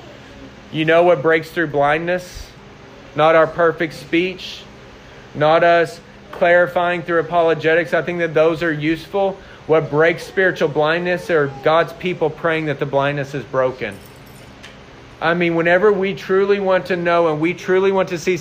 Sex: male